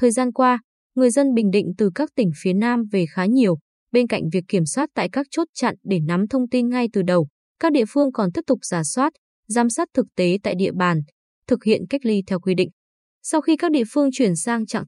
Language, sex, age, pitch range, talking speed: Vietnamese, female, 20-39, 190-255 Hz, 245 wpm